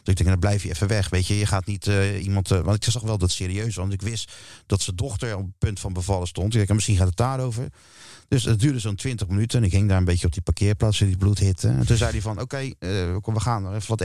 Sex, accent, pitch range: male, Dutch, 95-130 Hz